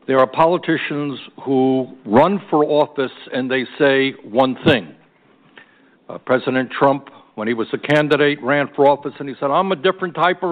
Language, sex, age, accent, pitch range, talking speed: English, male, 60-79, American, 130-165 Hz, 175 wpm